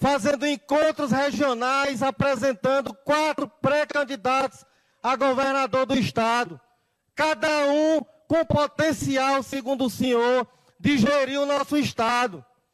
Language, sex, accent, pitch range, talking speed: Portuguese, male, Brazilian, 255-290 Hz, 105 wpm